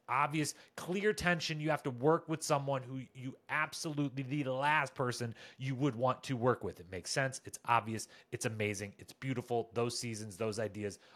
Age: 30-49